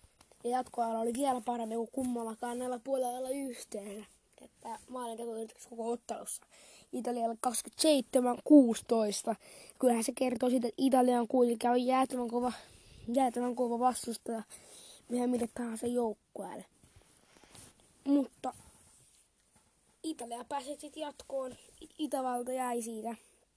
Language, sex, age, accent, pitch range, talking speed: Finnish, female, 20-39, native, 230-270 Hz, 100 wpm